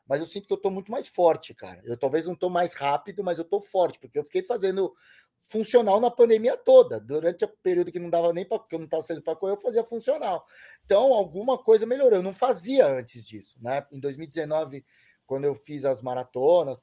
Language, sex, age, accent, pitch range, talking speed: Portuguese, male, 20-39, Brazilian, 140-205 Hz, 205 wpm